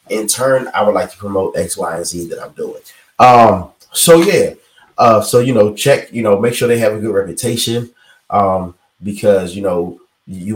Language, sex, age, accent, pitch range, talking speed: English, male, 30-49, American, 95-110 Hz, 205 wpm